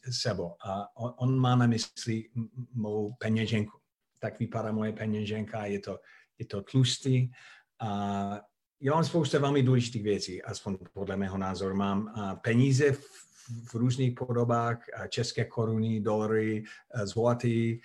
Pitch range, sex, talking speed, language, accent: 110-125 Hz, male, 130 wpm, Czech, native